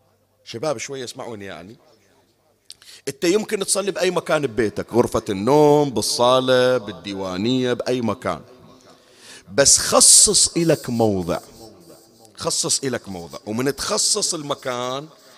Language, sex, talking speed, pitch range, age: Arabic, male, 100 wpm, 120-185 Hz, 40-59